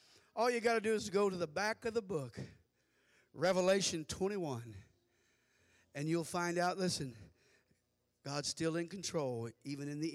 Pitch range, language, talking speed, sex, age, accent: 110-160 Hz, English, 160 wpm, male, 50-69, American